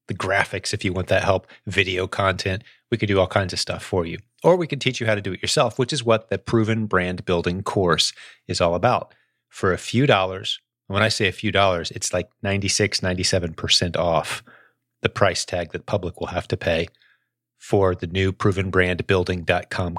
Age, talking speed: 30-49, 200 wpm